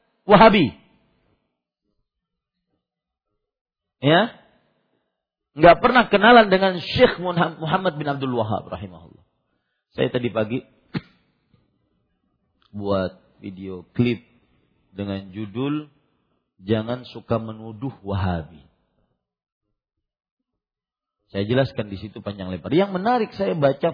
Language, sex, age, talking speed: Malay, male, 40-59, 85 wpm